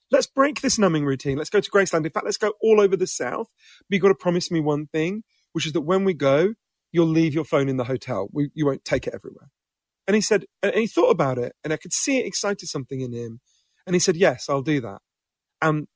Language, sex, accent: English, male, British